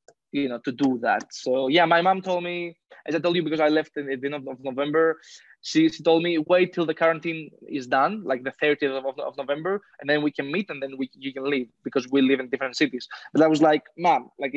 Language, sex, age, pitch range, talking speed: English, male, 20-39, 135-160 Hz, 255 wpm